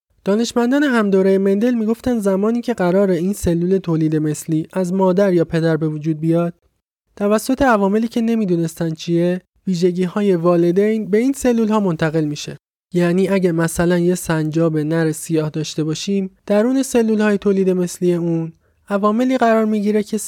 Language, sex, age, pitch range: Persian, male, 20-39, 165-210 Hz